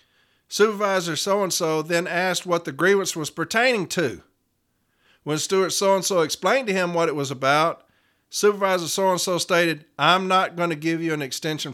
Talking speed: 160 wpm